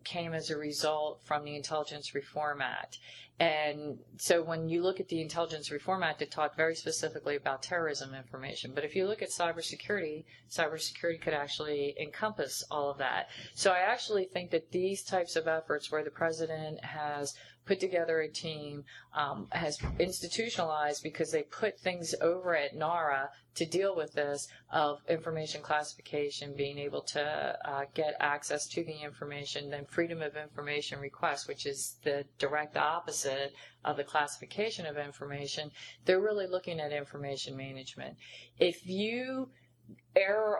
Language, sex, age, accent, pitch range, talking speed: English, female, 30-49, American, 145-170 Hz, 155 wpm